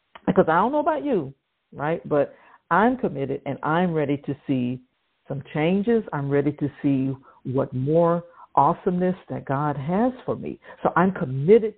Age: 60-79